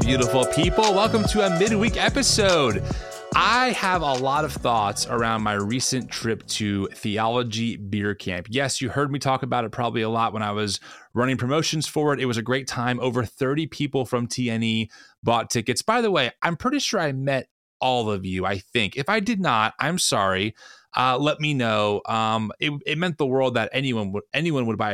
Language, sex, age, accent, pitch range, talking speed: English, male, 30-49, American, 115-150 Hz, 200 wpm